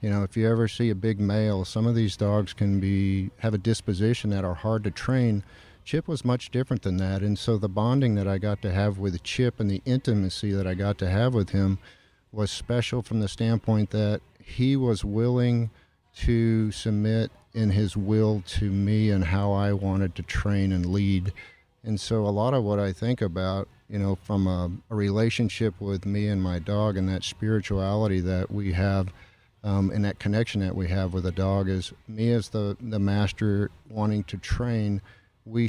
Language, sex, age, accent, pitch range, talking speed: English, male, 50-69, American, 95-110 Hz, 200 wpm